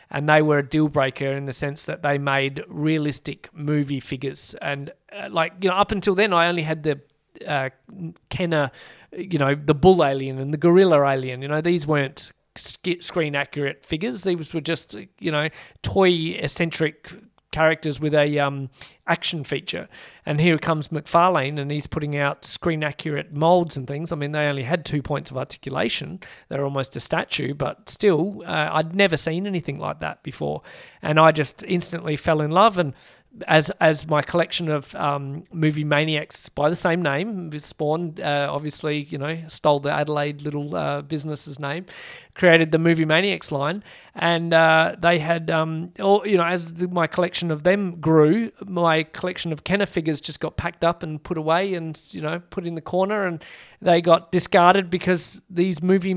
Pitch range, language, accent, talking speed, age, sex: 150-175 Hz, English, Australian, 180 wpm, 40-59, male